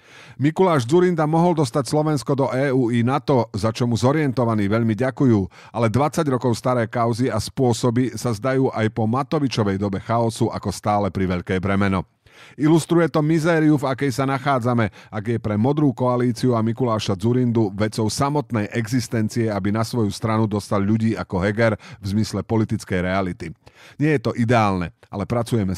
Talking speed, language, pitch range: 165 wpm, Slovak, 110-140 Hz